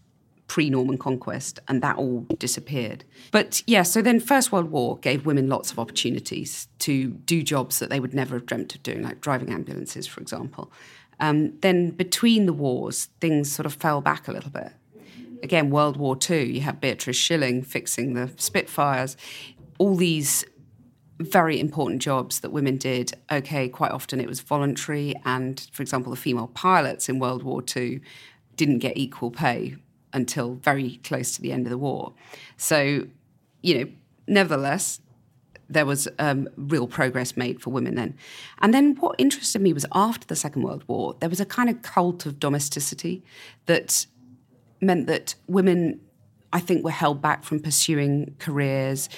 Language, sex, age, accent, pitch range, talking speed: English, female, 40-59, British, 130-165 Hz, 170 wpm